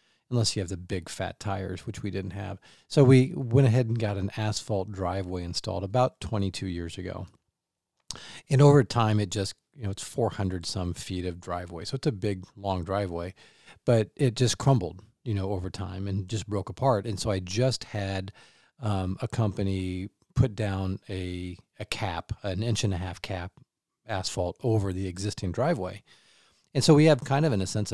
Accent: American